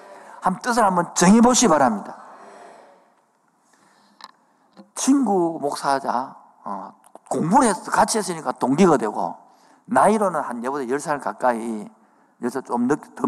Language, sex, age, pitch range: Korean, male, 50-69, 145-230 Hz